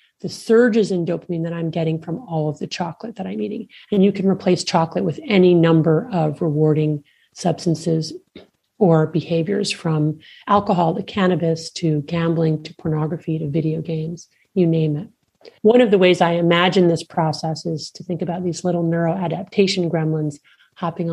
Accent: American